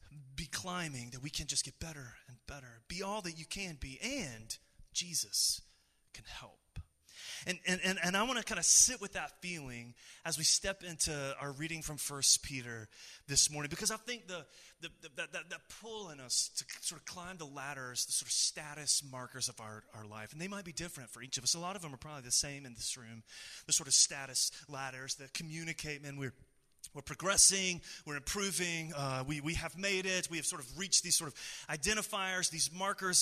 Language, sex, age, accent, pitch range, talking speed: English, male, 30-49, American, 135-180 Hz, 215 wpm